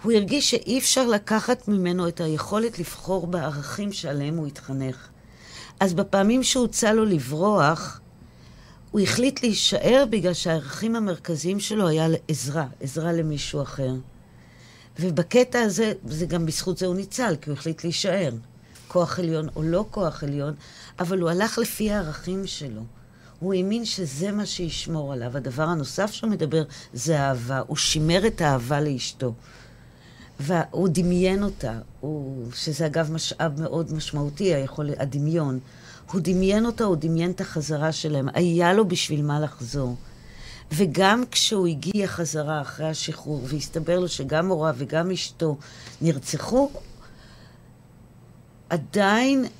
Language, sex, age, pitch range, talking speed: Hebrew, female, 50-69, 145-195 Hz, 130 wpm